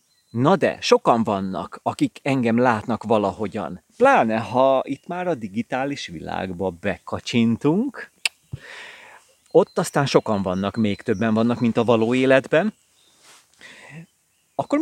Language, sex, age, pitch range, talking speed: Hungarian, male, 30-49, 120-190 Hz, 115 wpm